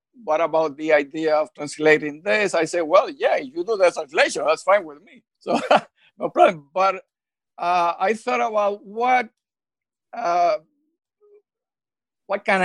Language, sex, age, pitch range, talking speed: English, male, 50-69, 155-225 Hz, 145 wpm